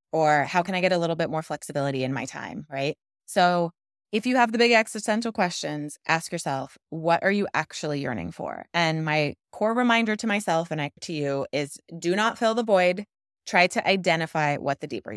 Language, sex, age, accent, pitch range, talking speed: English, female, 20-39, American, 155-205 Hz, 200 wpm